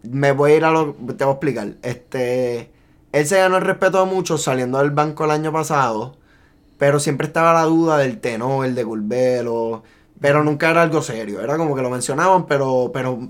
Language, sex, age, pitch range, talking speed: Spanish, male, 20-39, 125-155 Hz, 205 wpm